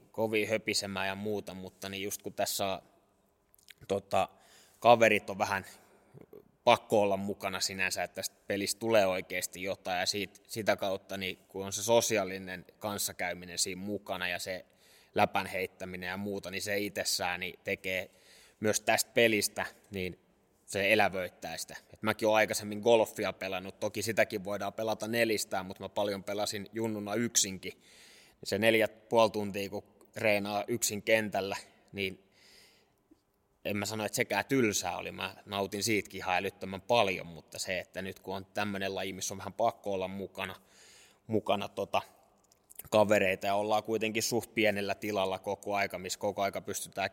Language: Finnish